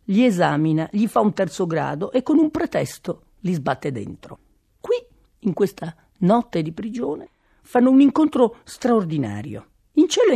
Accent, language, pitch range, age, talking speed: native, Italian, 150-230 Hz, 40-59, 150 wpm